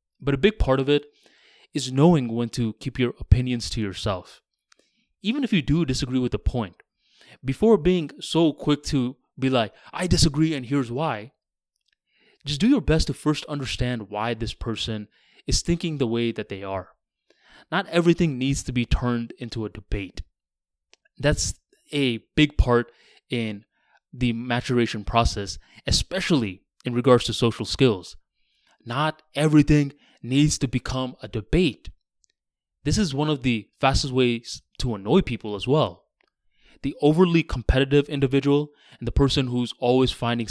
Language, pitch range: English, 110-145 Hz